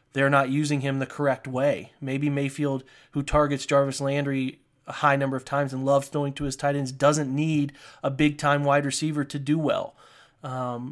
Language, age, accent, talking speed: English, 30-49, American, 190 wpm